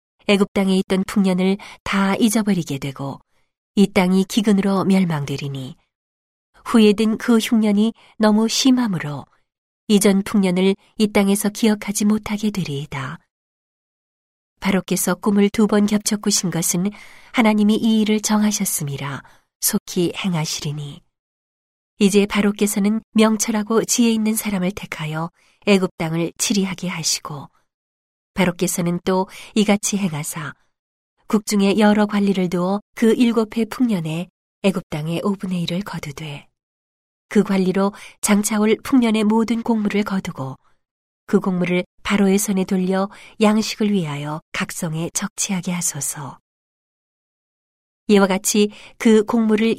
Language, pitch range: Korean, 170-210 Hz